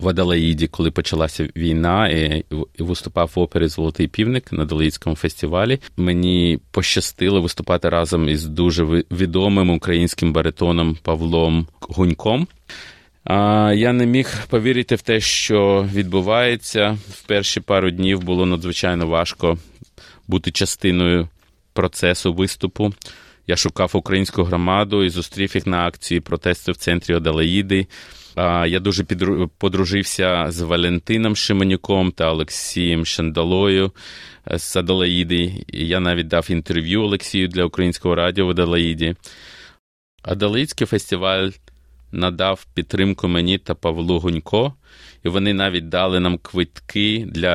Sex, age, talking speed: male, 30-49, 120 wpm